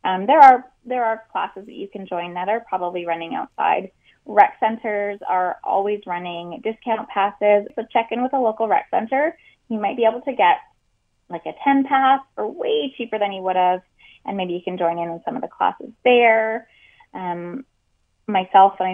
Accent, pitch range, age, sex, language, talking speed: American, 180-235 Hz, 20-39, female, English, 195 wpm